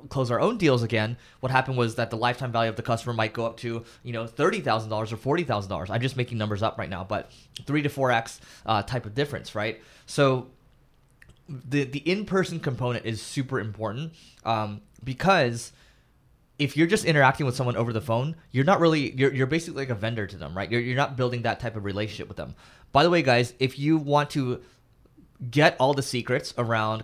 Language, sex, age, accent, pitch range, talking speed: English, male, 20-39, American, 110-140 Hz, 210 wpm